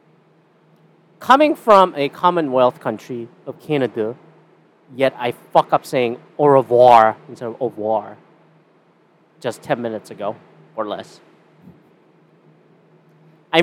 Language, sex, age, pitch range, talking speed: English, male, 30-49, 150-200 Hz, 110 wpm